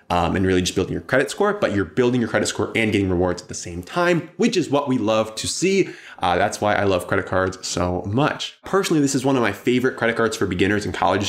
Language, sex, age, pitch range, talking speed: English, male, 20-39, 100-145 Hz, 265 wpm